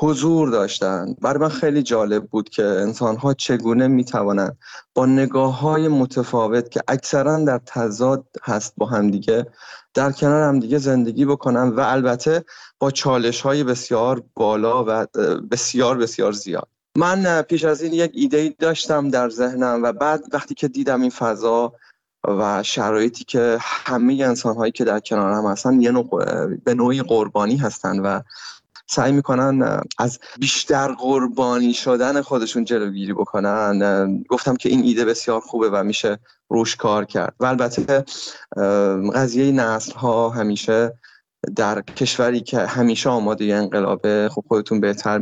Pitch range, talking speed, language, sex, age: 110-135 Hz, 145 wpm, Persian, male, 30-49